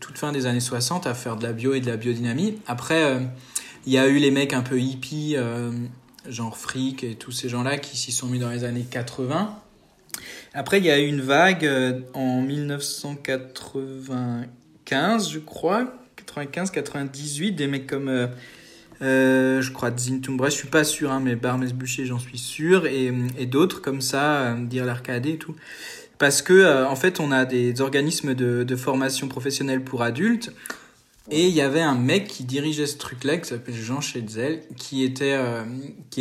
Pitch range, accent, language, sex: 125-150 Hz, French, French, male